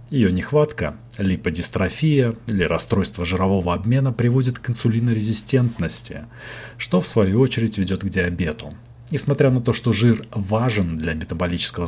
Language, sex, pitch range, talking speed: Russian, male, 95-120 Hz, 125 wpm